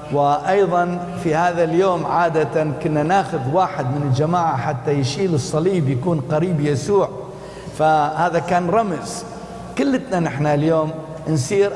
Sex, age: male, 60-79